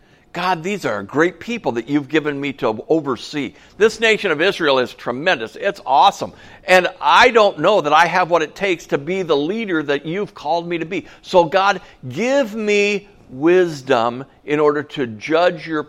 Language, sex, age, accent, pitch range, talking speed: English, male, 60-79, American, 140-195 Hz, 185 wpm